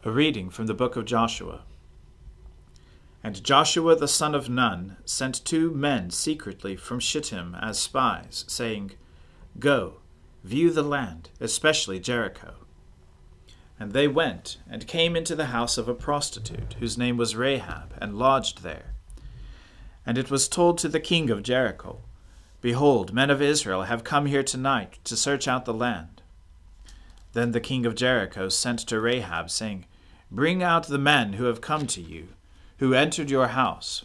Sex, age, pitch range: male, 40-59, 90-140 Hz